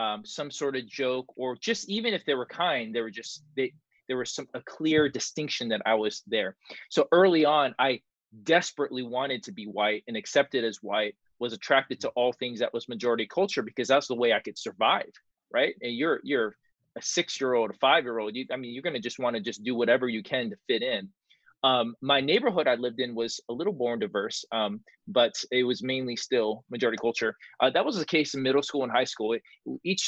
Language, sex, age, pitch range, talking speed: English, male, 20-39, 115-140 Hz, 230 wpm